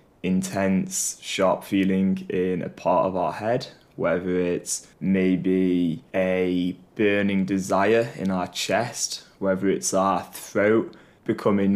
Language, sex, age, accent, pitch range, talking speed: English, male, 20-39, British, 95-100 Hz, 115 wpm